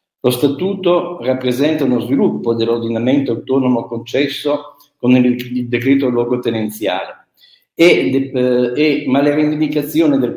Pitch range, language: 115-145 Hz, Italian